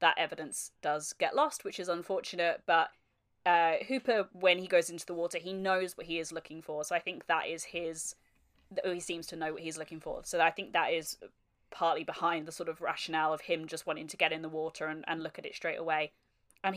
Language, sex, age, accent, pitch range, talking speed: English, female, 20-39, British, 160-185 Hz, 235 wpm